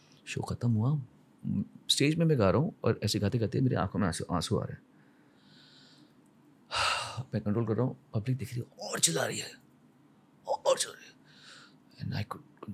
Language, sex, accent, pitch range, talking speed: Hindi, male, native, 105-135 Hz, 165 wpm